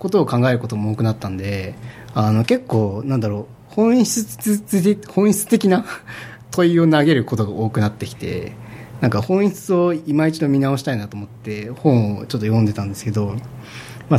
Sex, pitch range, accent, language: male, 110-145 Hz, native, Japanese